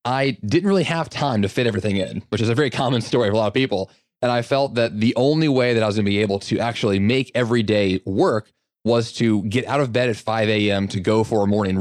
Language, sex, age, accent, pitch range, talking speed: English, male, 20-39, American, 105-130 Hz, 275 wpm